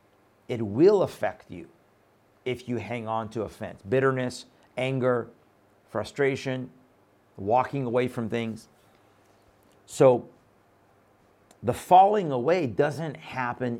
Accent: American